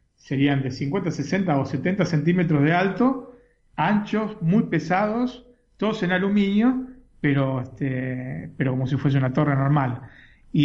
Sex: male